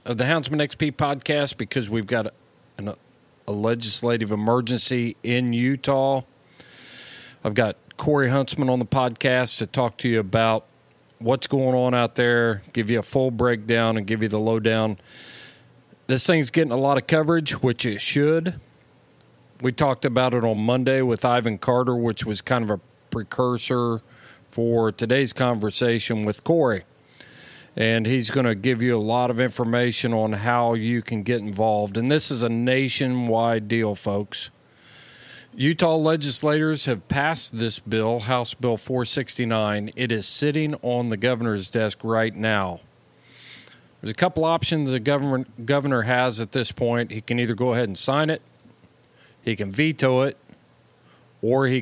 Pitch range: 115-135 Hz